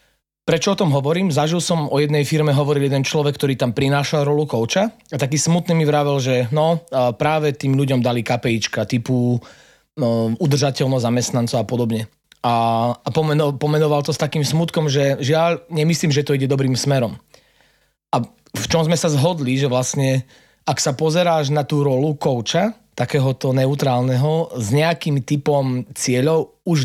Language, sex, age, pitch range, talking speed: Slovak, male, 30-49, 125-155 Hz, 160 wpm